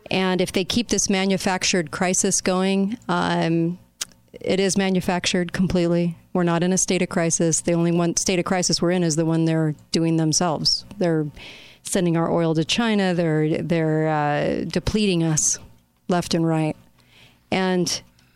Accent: American